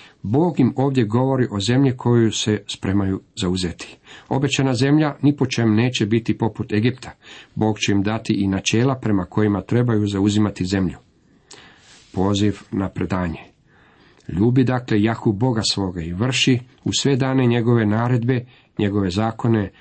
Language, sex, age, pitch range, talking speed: Croatian, male, 50-69, 100-120 Hz, 140 wpm